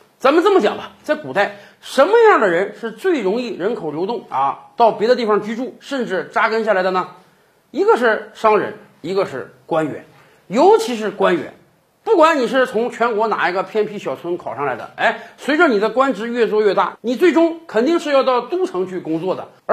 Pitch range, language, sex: 195-285 Hz, Chinese, male